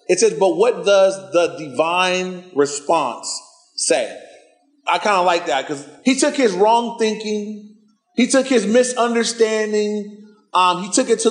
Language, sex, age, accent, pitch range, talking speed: English, male, 30-49, American, 180-250 Hz, 155 wpm